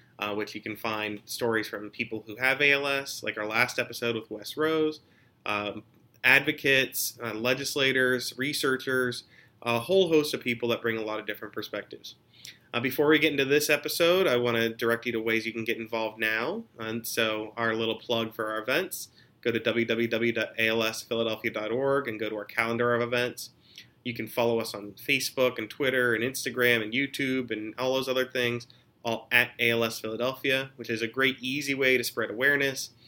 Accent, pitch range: American, 115-135 Hz